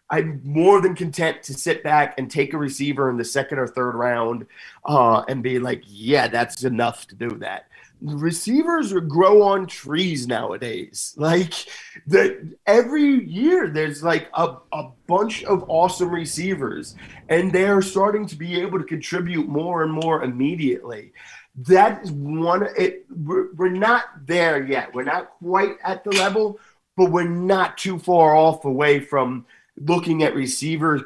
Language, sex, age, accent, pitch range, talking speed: English, male, 30-49, American, 135-180 Hz, 160 wpm